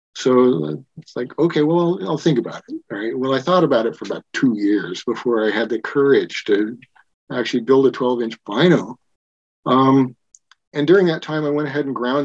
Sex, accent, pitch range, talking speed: male, American, 120-150 Hz, 190 wpm